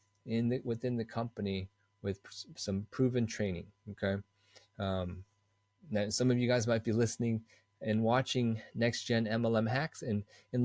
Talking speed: 150 wpm